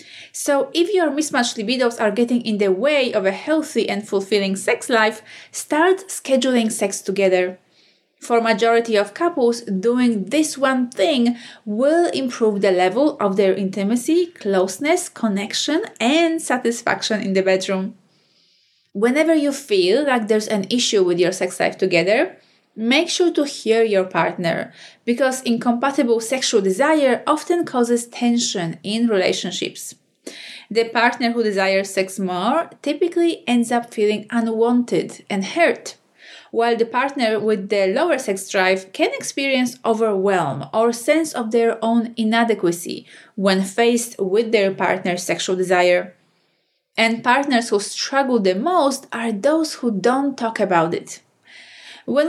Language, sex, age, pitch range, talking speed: English, female, 30-49, 200-270 Hz, 140 wpm